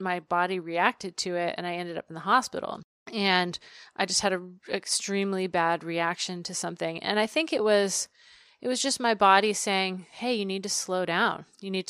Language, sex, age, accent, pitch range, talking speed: English, female, 30-49, American, 180-215 Hz, 210 wpm